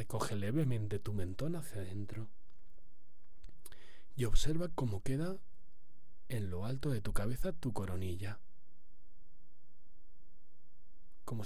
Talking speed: 100 wpm